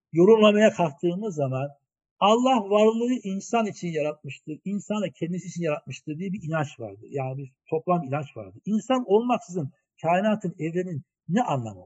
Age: 60-79